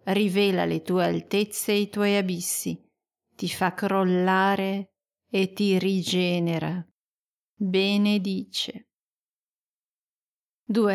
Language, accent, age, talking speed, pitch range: Italian, native, 40-59, 90 wpm, 185-220 Hz